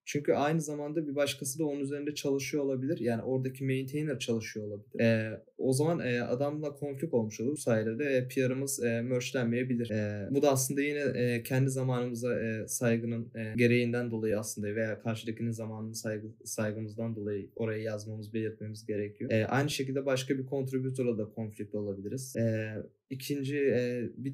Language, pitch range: Turkish, 115-135 Hz